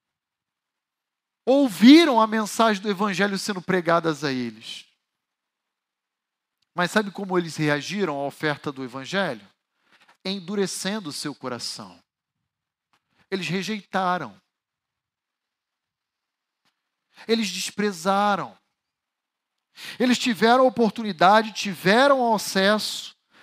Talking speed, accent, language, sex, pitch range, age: 80 wpm, Brazilian, Portuguese, male, 160-220 Hz, 40-59